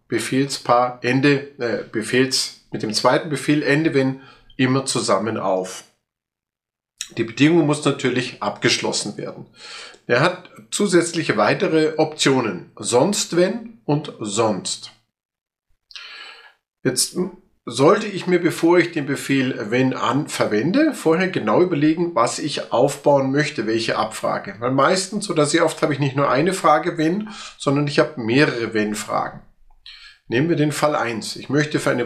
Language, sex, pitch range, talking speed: German, male, 125-175 Hz, 140 wpm